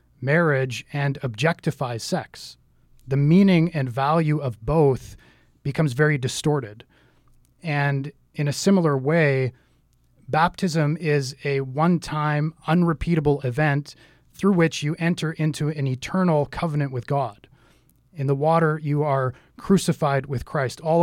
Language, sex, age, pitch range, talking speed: English, male, 30-49, 135-160 Hz, 125 wpm